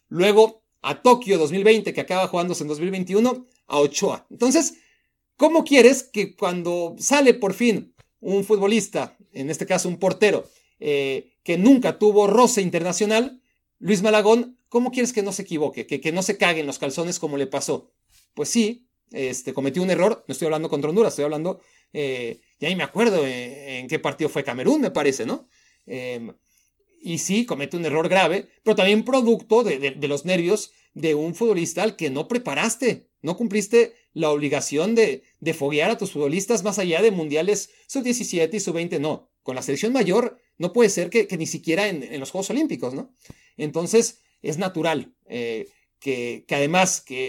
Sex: male